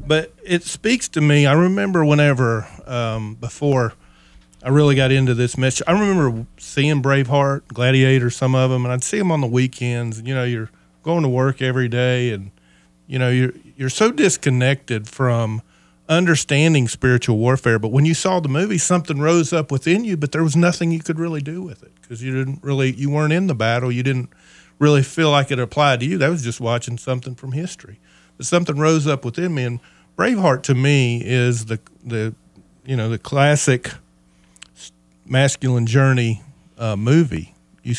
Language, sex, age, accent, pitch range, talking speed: English, male, 40-59, American, 115-145 Hz, 185 wpm